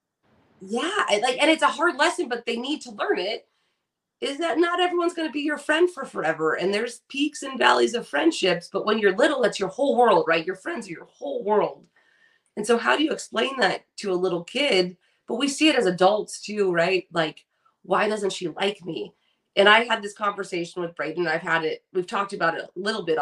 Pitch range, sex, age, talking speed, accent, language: 175-245 Hz, female, 30-49, 225 wpm, American, English